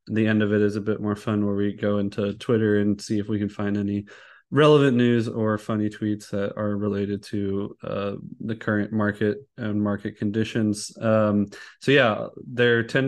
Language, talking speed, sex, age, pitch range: English, 195 wpm, male, 20-39, 105-120 Hz